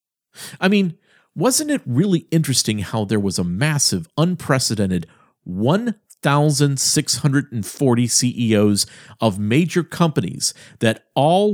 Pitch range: 125-180 Hz